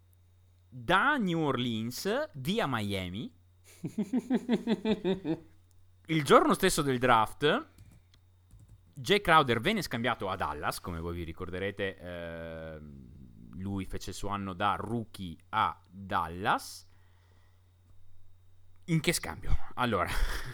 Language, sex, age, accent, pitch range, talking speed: Italian, male, 30-49, native, 90-140 Hz, 100 wpm